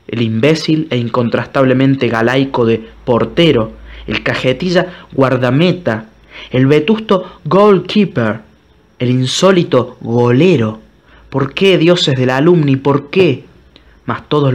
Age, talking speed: 20-39, 105 wpm